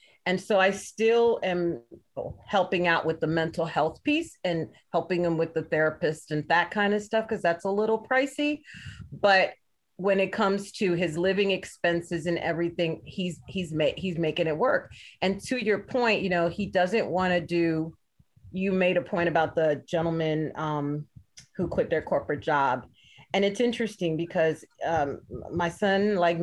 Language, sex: English, female